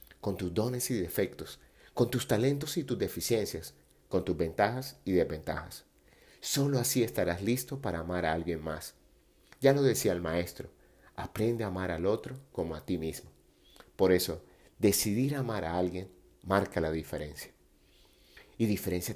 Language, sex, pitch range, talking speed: Spanish, male, 85-120 Hz, 155 wpm